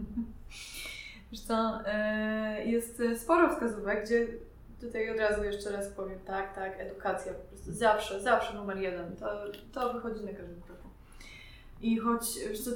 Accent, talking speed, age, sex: native, 135 wpm, 20-39, female